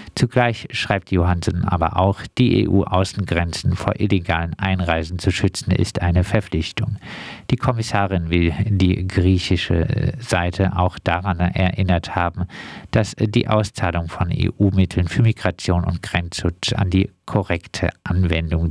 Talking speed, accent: 125 wpm, German